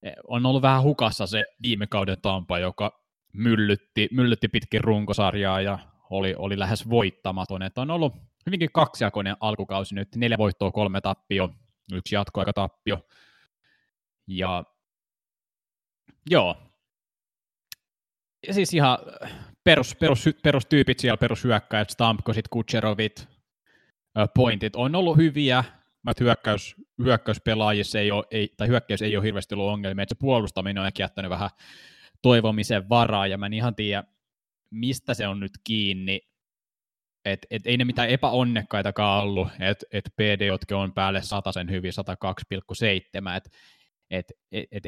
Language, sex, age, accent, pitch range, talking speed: Finnish, male, 20-39, native, 100-120 Hz, 130 wpm